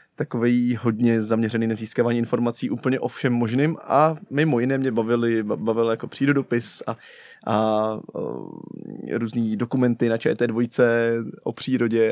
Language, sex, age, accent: Czech, male, 20-39, native